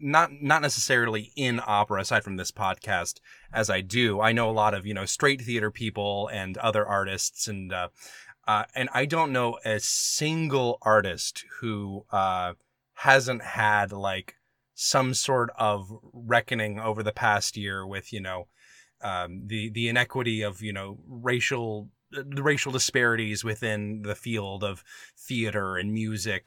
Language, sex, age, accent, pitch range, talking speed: English, male, 20-39, American, 105-130 Hz, 155 wpm